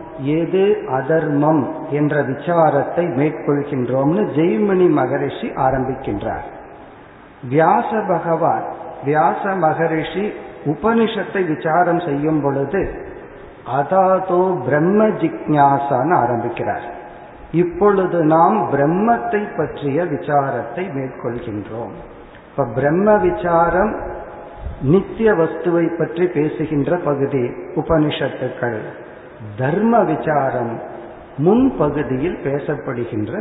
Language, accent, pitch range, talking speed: Tamil, native, 140-180 Hz, 65 wpm